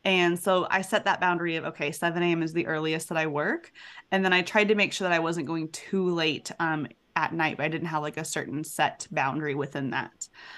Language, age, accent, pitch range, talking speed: English, 20-39, American, 165-195 Hz, 245 wpm